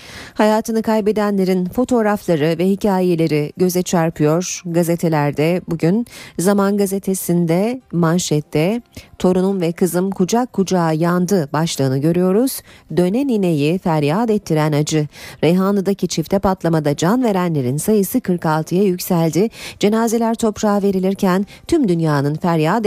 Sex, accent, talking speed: female, native, 100 wpm